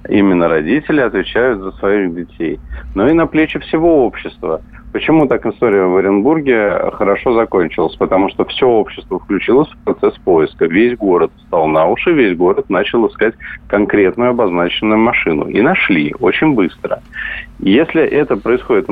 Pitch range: 95-155 Hz